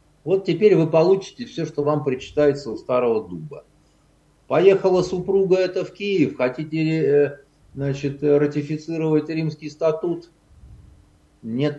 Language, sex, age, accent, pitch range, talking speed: Russian, male, 50-69, native, 135-175 Hz, 110 wpm